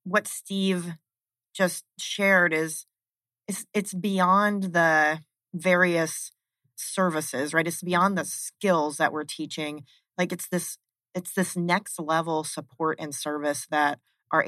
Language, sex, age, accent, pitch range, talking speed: English, female, 30-49, American, 150-175 Hz, 130 wpm